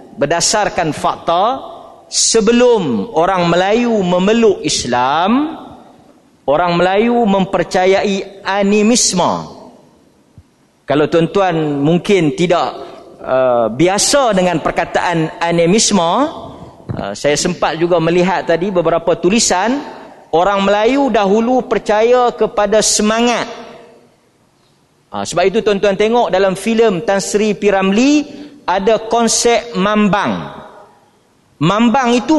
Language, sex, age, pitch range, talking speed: Malay, male, 40-59, 190-240 Hz, 90 wpm